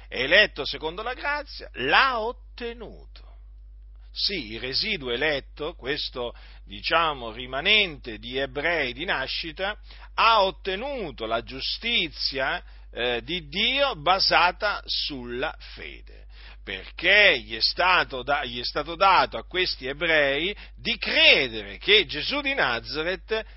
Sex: male